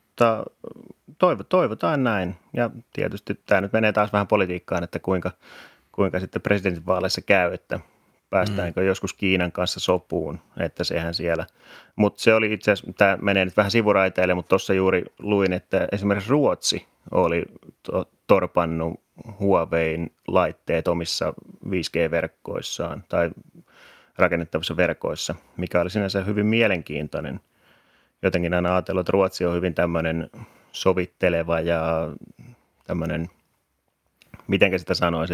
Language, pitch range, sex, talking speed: Finnish, 85-105 Hz, male, 115 wpm